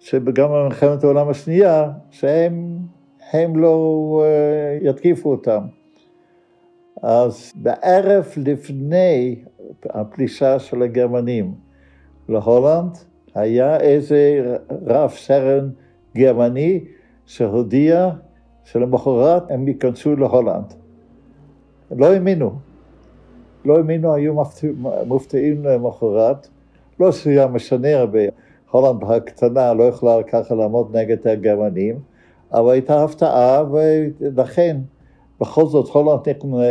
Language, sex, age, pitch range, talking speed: Hebrew, male, 60-79, 115-150 Hz, 85 wpm